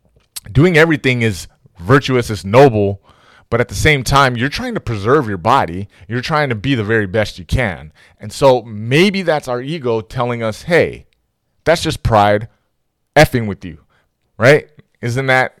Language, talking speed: English, 170 wpm